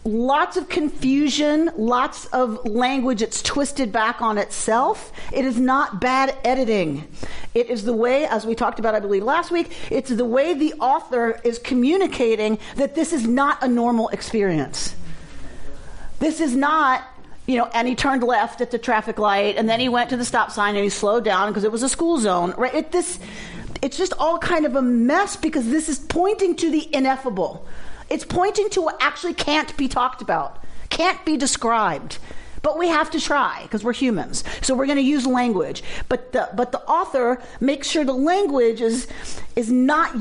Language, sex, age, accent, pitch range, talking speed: English, female, 40-59, American, 225-290 Hz, 190 wpm